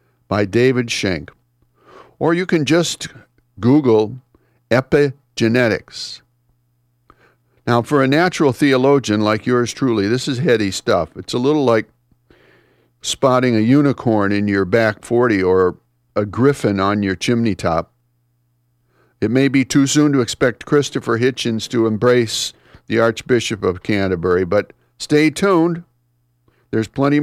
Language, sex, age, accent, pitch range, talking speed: English, male, 50-69, American, 100-135 Hz, 130 wpm